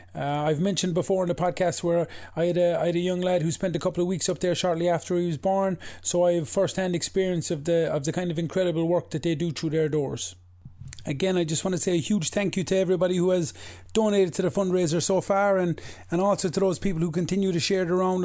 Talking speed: 265 wpm